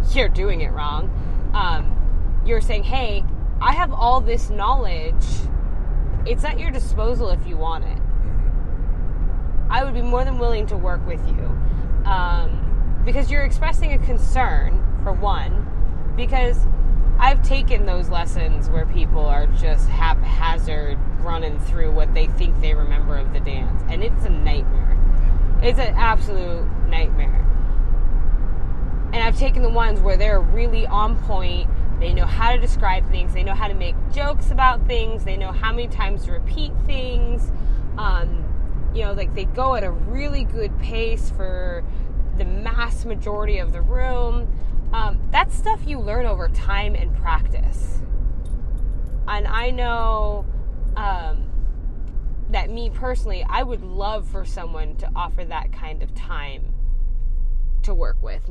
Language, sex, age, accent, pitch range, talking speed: English, female, 10-29, American, 75-85 Hz, 150 wpm